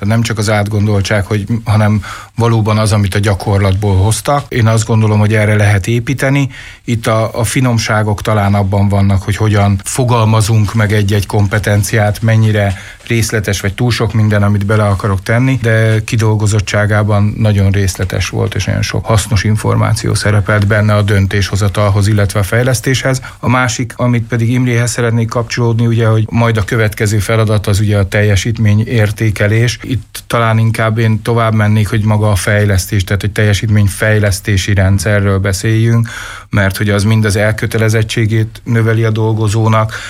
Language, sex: Hungarian, male